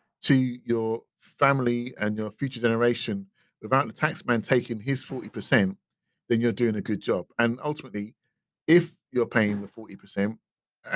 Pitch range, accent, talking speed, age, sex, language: 110-125 Hz, British, 140 wpm, 40-59, male, English